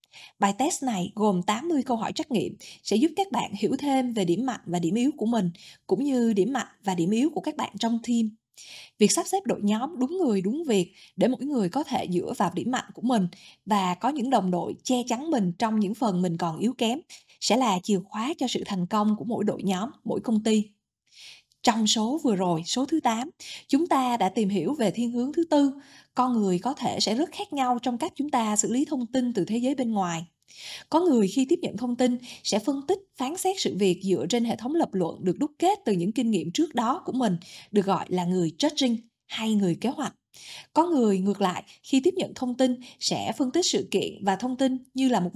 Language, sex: Vietnamese, female